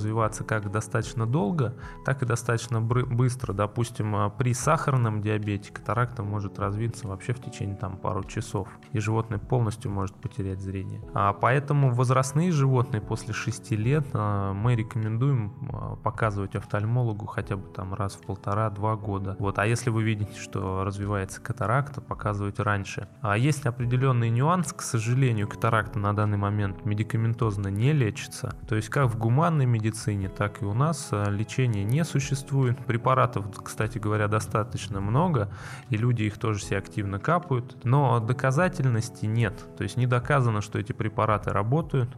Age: 20-39